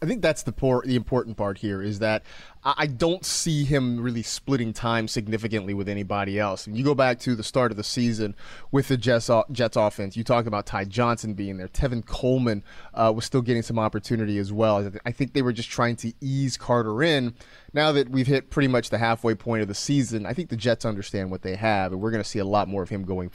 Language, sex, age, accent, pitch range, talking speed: English, male, 30-49, American, 105-135 Hz, 240 wpm